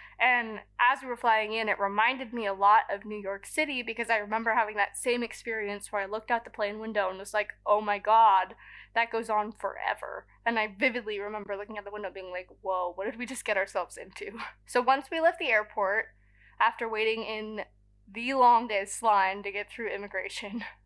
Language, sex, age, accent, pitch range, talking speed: English, female, 20-39, American, 205-250 Hz, 210 wpm